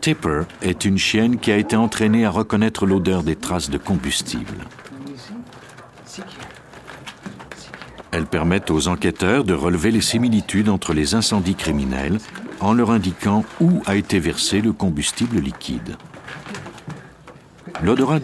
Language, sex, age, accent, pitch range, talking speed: French, male, 60-79, French, 85-110 Hz, 125 wpm